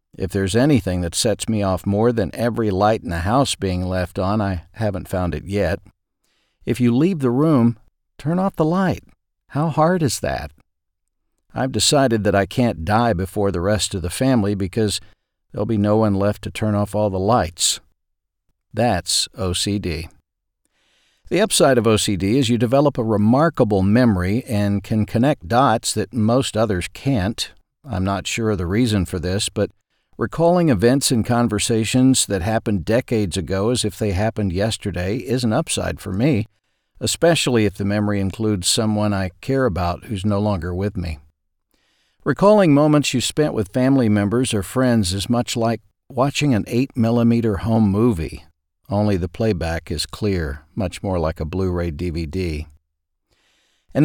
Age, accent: 50-69, American